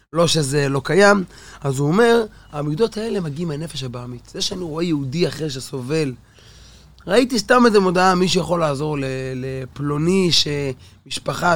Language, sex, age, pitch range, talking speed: Hebrew, male, 20-39, 135-185 Hz, 140 wpm